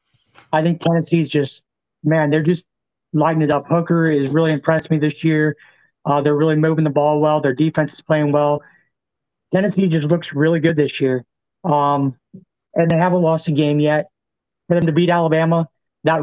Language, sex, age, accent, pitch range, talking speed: English, male, 30-49, American, 145-165 Hz, 185 wpm